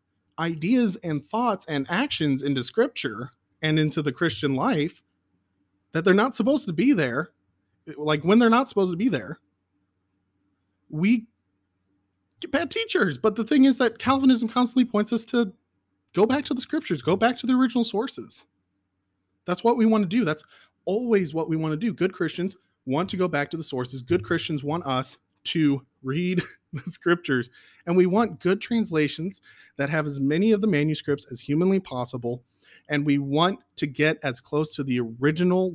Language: English